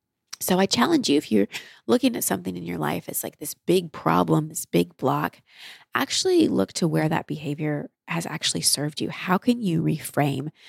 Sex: female